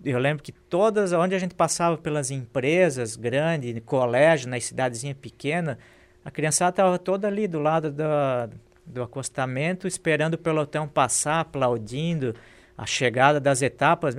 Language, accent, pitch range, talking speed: Portuguese, Brazilian, 120-155 Hz, 145 wpm